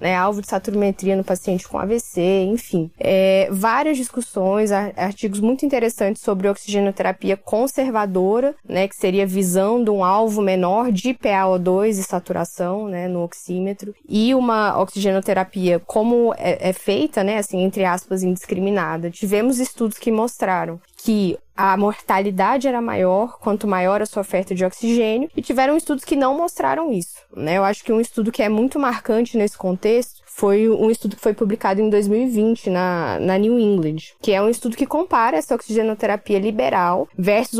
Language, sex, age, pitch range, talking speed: Portuguese, female, 10-29, 190-235 Hz, 165 wpm